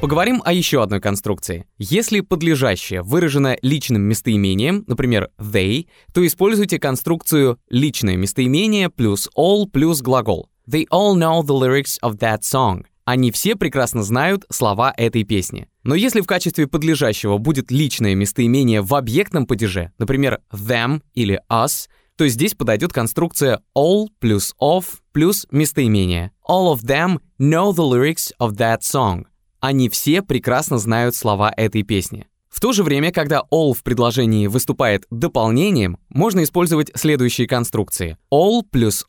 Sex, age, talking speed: male, 20-39, 140 wpm